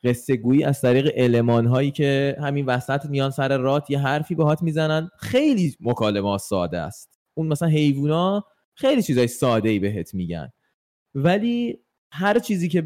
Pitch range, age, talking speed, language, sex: 115-165 Hz, 20-39, 150 wpm, Persian, male